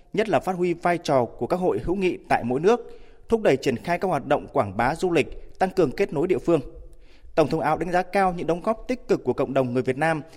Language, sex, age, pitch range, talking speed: Vietnamese, male, 20-39, 135-180 Hz, 280 wpm